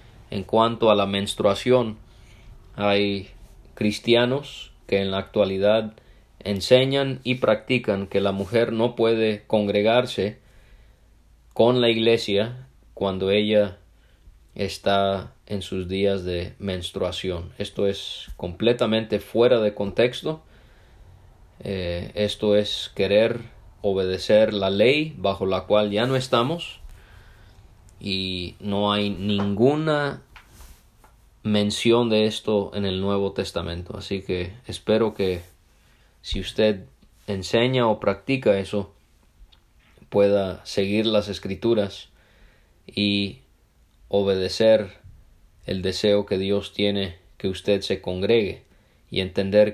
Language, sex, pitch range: English, male, 95-110 Hz